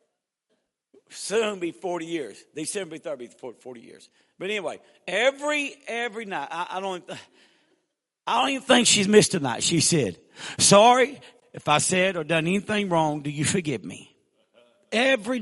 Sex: male